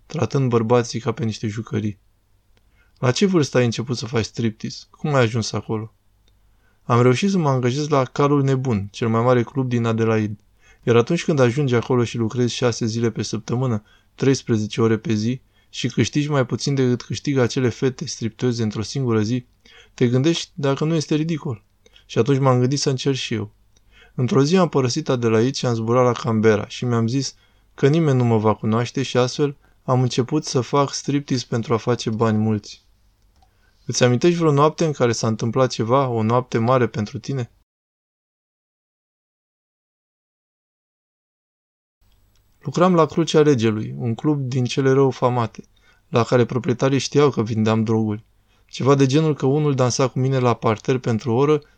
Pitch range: 110-135 Hz